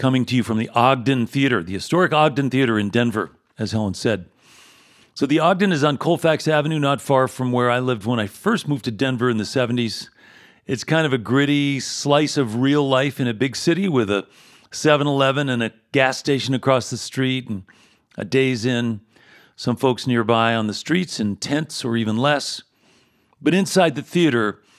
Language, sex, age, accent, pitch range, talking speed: English, male, 40-59, American, 115-145 Hz, 195 wpm